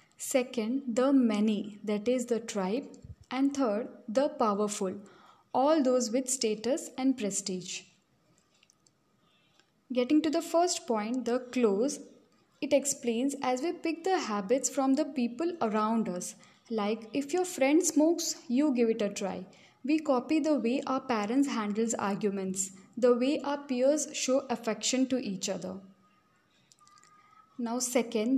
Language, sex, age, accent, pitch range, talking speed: English, female, 10-29, Indian, 220-280 Hz, 135 wpm